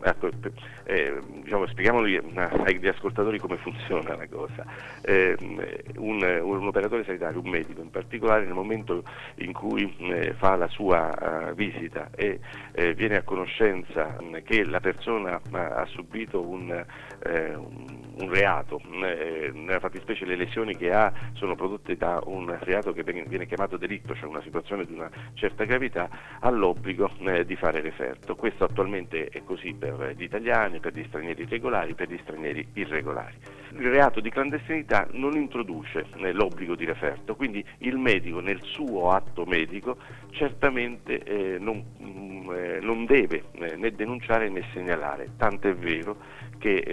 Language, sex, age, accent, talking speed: Italian, male, 50-69, native, 150 wpm